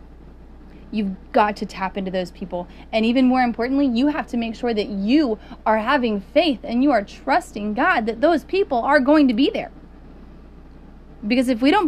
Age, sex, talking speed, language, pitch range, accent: 20-39, female, 190 wpm, English, 215-285 Hz, American